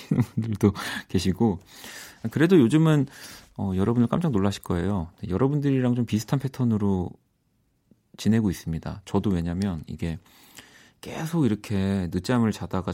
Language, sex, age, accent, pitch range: Korean, male, 40-59, native, 95-135 Hz